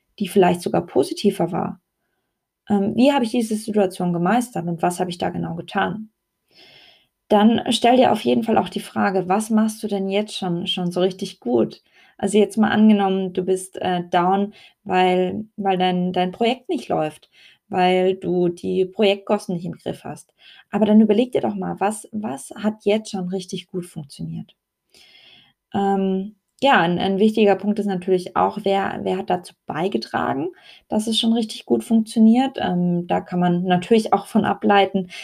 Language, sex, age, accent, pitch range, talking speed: German, female, 20-39, German, 180-215 Hz, 175 wpm